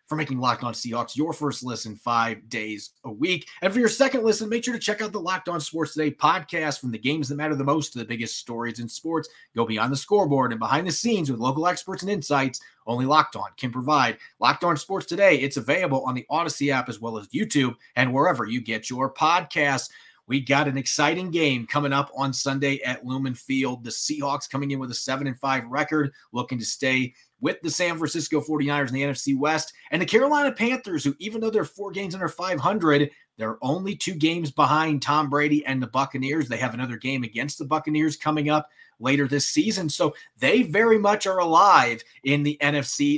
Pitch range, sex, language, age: 130-160 Hz, male, English, 30-49